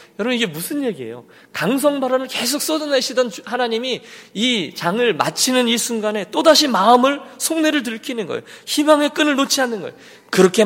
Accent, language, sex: native, Korean, male